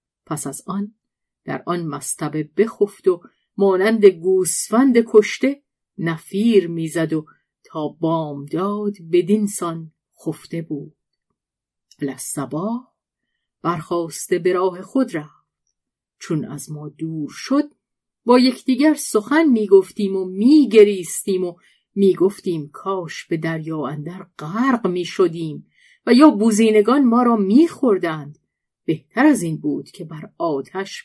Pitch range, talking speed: 160-225 Hz, 115 wpm